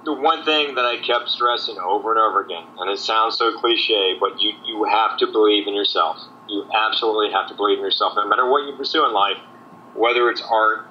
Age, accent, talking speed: 40-59, American, 225 wpm